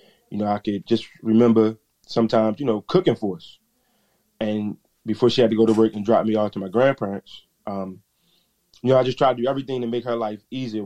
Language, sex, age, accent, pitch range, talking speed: English, male, 20-39, American, 100-115 Hz, 225 wpm